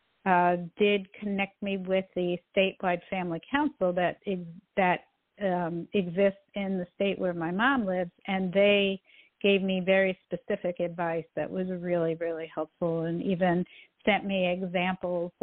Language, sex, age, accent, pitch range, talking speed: English, female, 50-69, American, 180-215 Hz, 150 wpm